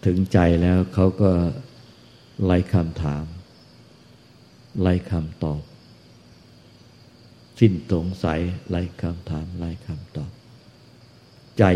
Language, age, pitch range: Thai, 60-79, 80-100 Hz